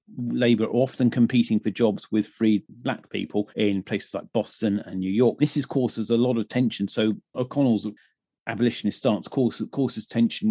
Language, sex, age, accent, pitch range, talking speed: English, male, 40-59, British, 105-120 Hz, 170 wpm